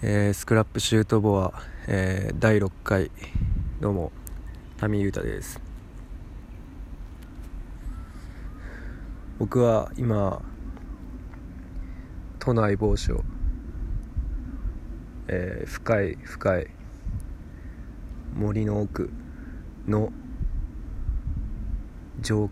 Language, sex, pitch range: Japanese, male, 80-100 Hz